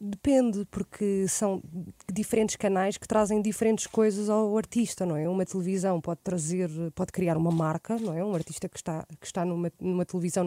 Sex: female